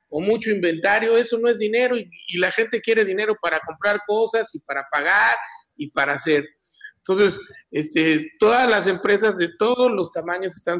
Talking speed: 180 wpm